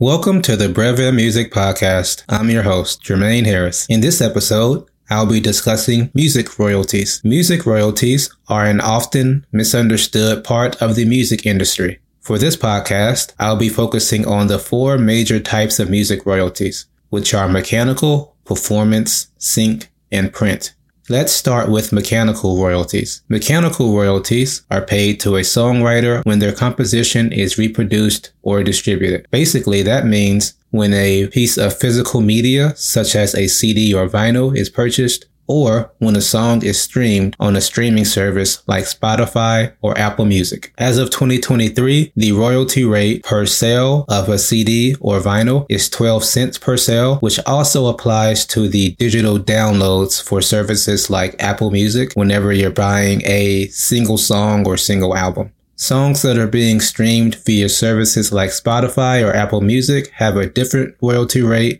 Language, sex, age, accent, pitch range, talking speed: English, male, 20-39, American, 100-120 Hz, 155 wpm